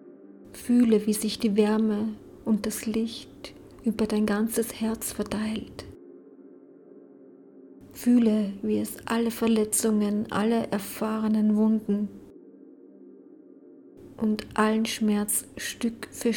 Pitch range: 210-230 Hz